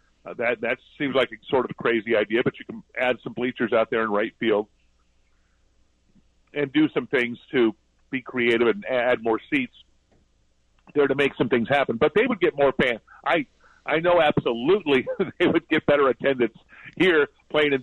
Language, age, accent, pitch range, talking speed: English, 50-69, American, 105-150 Hz, 190 wpm